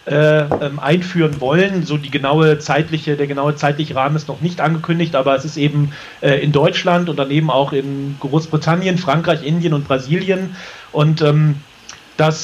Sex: male